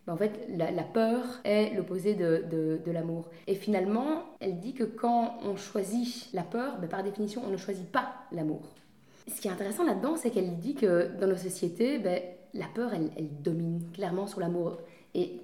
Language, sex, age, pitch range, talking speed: French, female, 20-39, 185-230 Hz, 200 wpm